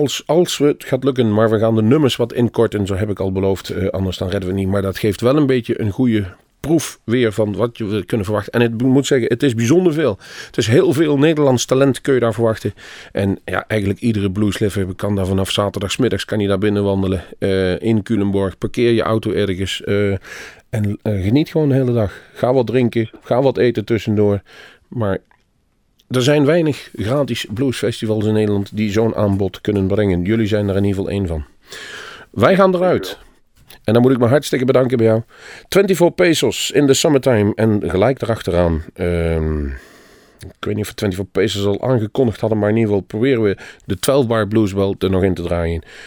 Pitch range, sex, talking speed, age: 100-125 Hz, male, 205 wpm, 40-59